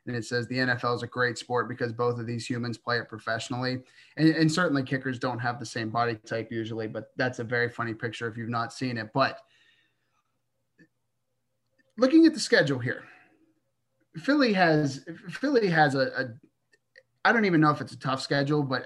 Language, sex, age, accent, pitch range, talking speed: English, male, 30-49, American, 125-165 Hz, 195 wpm